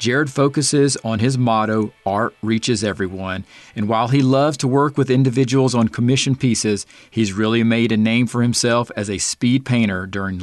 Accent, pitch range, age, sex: American, 110-130 Hz, 40-59, male